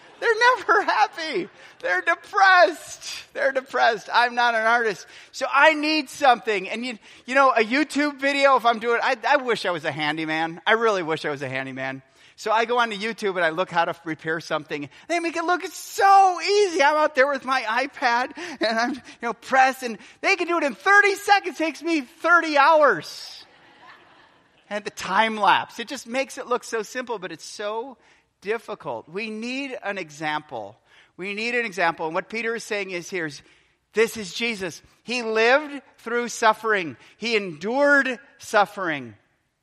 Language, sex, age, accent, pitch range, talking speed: English, male, 30-49, American, 170-275 Hz, 185 wpm